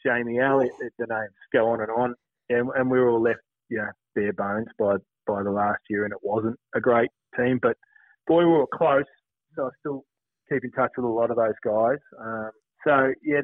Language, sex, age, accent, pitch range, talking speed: English, male, 30-49, Australian, 115-150 Hz, 220 wpm